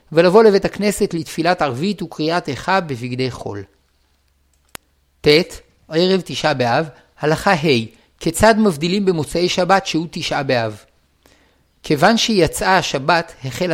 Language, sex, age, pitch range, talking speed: Hebrew, male, 50-69, 145-195 Hz, 120 wpm